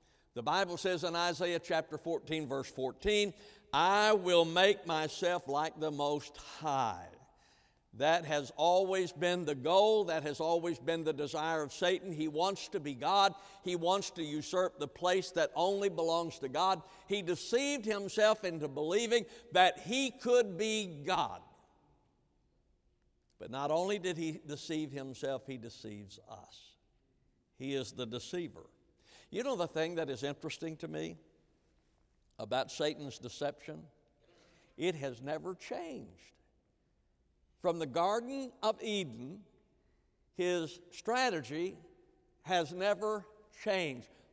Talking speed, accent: 130 wpm, American